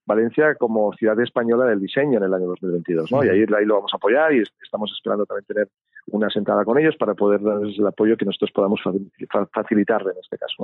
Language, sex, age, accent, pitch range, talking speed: Spanish, male, 40-59, Spanish, 105-125 Hz, 220 wpm